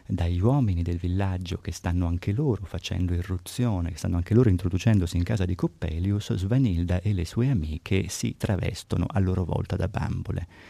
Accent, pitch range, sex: native, 90-110 Hz, male